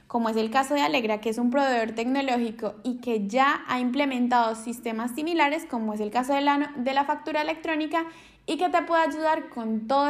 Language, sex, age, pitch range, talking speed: Spanish, female, 10-29, 230-295 Hz, 200 wpm